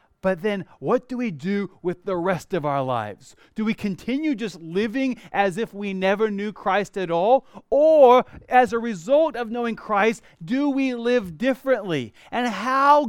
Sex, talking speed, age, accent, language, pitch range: male, 175 wpm, 30-49, American, English, 180-245 Hz